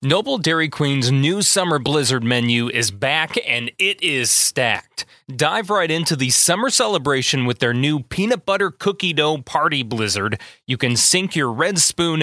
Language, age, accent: English, 30-49, American